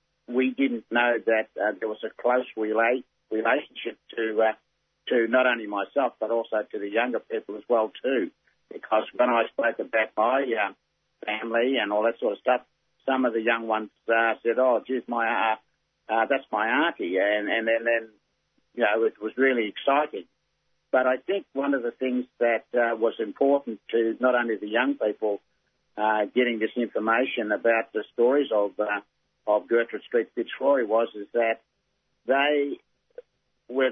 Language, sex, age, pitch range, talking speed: English, male, 60-79, 110-125 Hz, 175 wpm